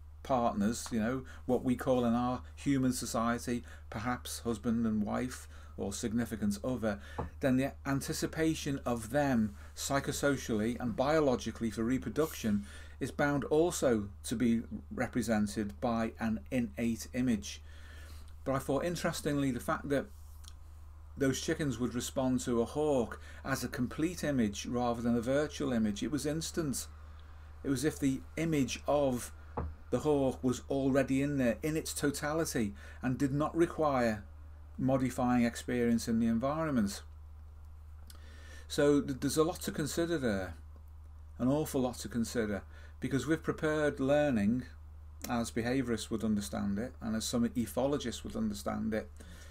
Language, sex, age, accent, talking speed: English, male, 40-59, British, 140 wpm